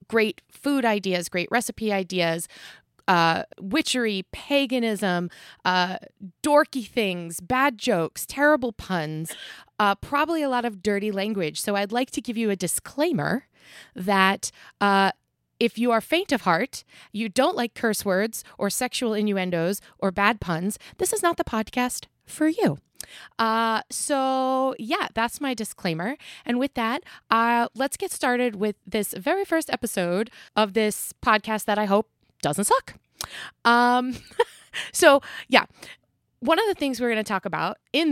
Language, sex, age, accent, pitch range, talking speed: English, female, 20-39, American, 190-255 Hz, 150 wpm